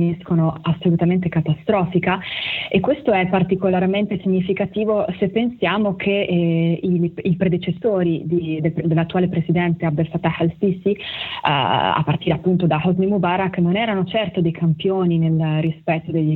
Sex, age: female, 20-39